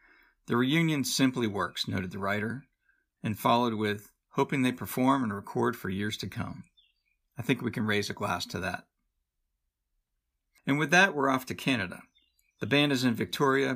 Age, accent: 50-69, American